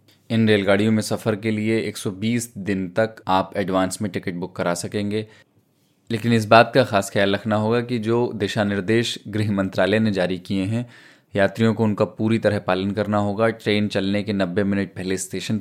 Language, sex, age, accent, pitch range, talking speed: Hindi, male, 20-39, native, 100-115 Hz, 190 wpm